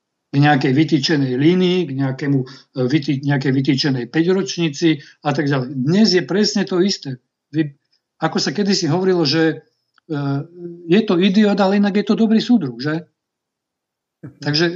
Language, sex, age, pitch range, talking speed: Slovak, male, 50-69, 140-175 Hz, 130 wpm